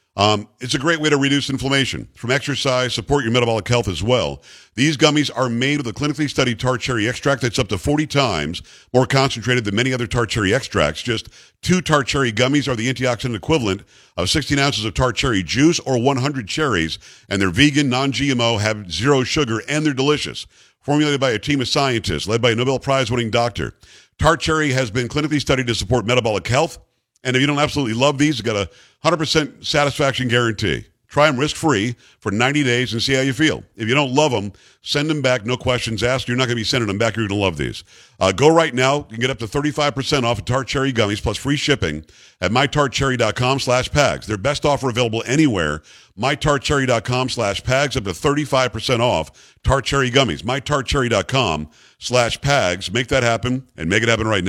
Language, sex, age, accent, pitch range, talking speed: English, male, 50-69, American, 115-140 Hz, 205 wpm